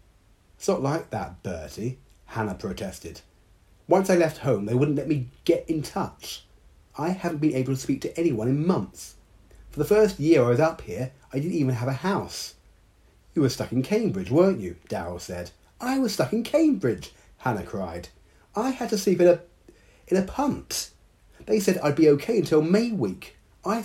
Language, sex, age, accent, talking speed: English, male, 40-59, British, 190 wpm